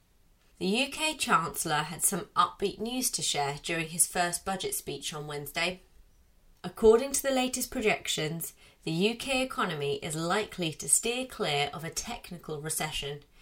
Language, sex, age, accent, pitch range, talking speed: English, female, 30-49, British, 150-210 Hz, 150 wpm